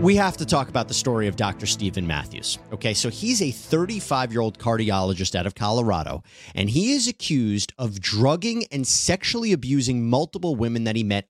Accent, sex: American, male